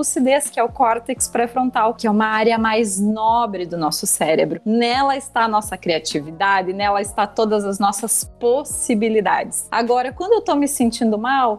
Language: Portuguese